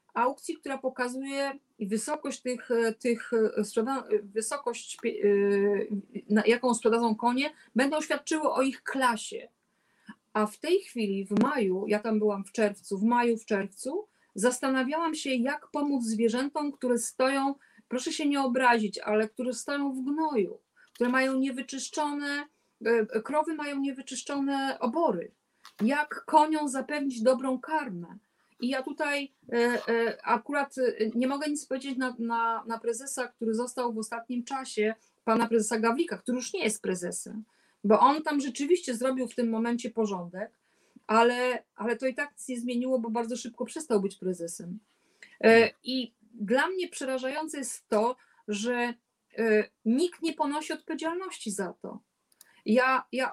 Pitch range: 225-275 Hz